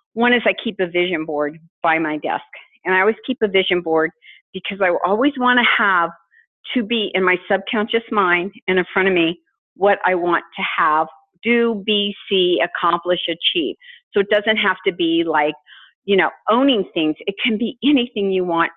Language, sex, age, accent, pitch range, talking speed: English, female, 50-69, American, 175-230 Hz, 195 wpm